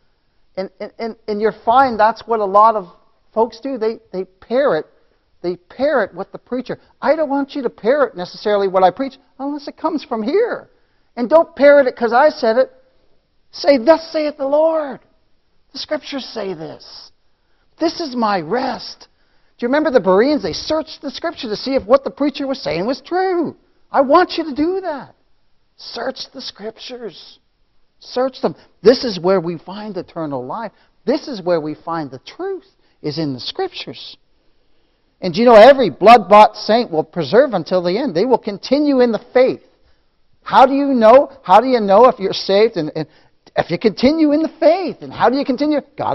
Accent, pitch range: American, 195-300 Hz